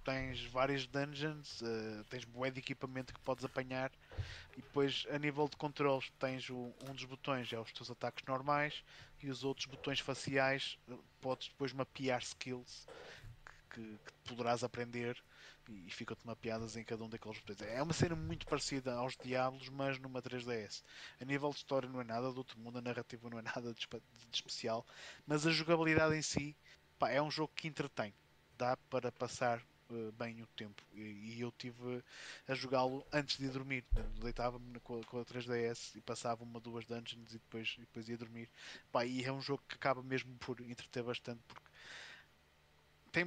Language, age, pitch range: Portuguese, 20-39, 115-135 Hz